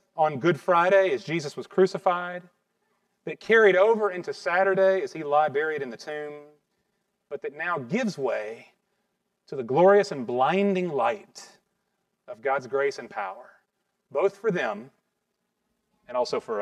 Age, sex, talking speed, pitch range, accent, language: 30-49, male, 150 wpm, 160-235 Hz, American, English